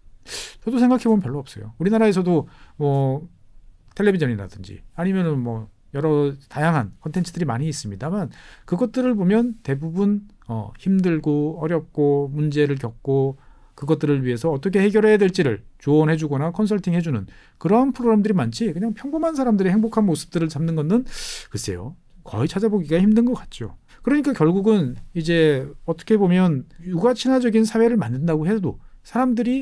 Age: 40-59